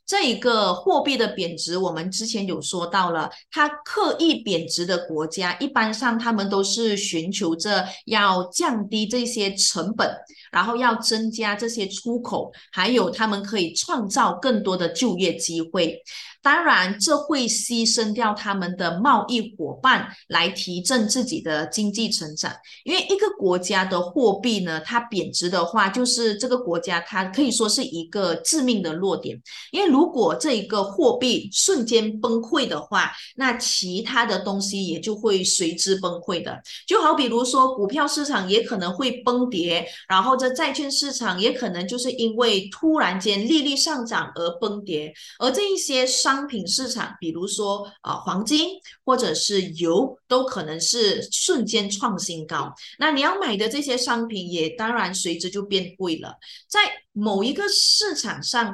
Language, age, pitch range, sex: Chinese, 30-49, 180-250 Hz, female